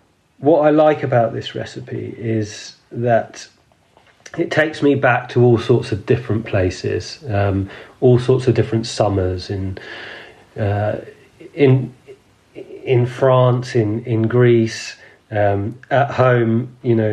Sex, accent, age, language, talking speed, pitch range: male, British, 30-49, English, 130 wpm, 110-135 Hz